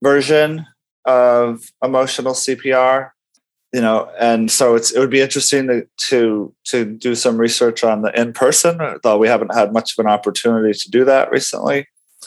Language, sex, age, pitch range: English, male, 30-49, 105-130 Hz